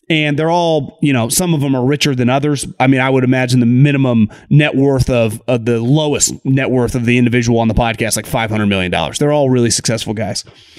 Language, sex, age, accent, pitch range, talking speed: English, male, 30-49, American, 135-190 Hz, 230 wpm